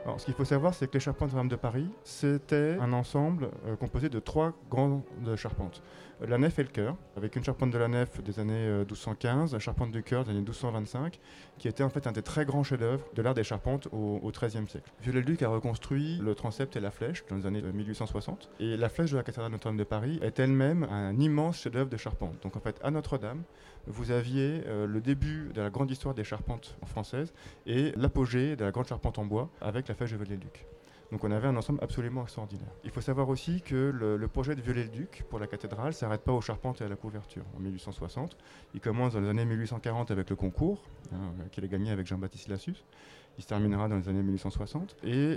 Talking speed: 235 wpm